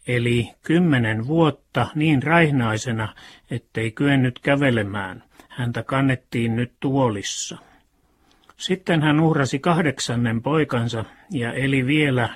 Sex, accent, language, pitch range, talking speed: male, native, Finnish, 120-145 Hz, 95 wpm